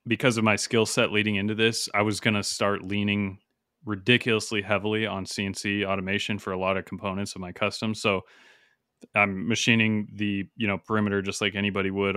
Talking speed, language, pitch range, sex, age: 185 wpm, English, 100-110 Hz, male, 30-49